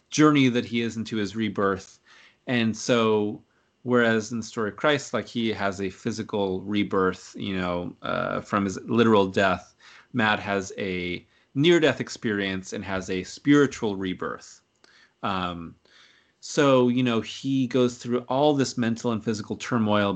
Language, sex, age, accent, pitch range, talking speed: English, male, 30-49, American, 100-125 Hz, 150 wpm